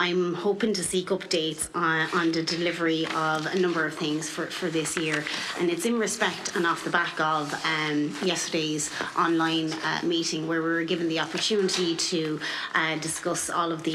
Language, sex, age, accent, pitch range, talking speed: English, female, 30-49, Irish, 160-175 Hz, 190 wpm